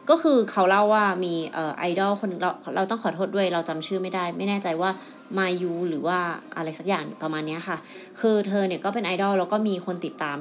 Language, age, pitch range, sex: Thai, 30-49, 170-215 Hz, female